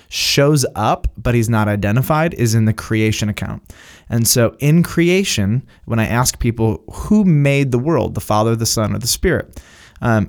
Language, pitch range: English, 110-130 Hz